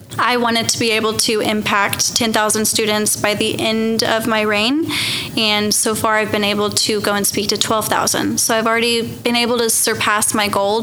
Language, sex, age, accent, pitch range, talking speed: English, female, 10-29, American, 205-230 Hz, 200 wpm